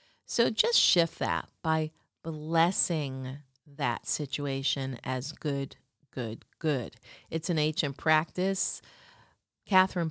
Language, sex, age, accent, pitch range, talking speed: English, female, 40-59, American, 135-160 Hz, 100 wpm